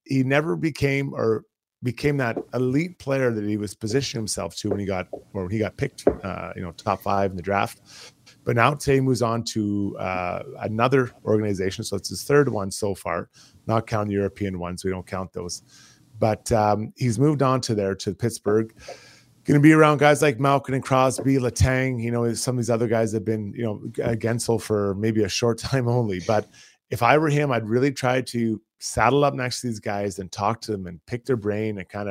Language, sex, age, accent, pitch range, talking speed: English, male, 30-49, American, 105-130 Hz, 215 wpm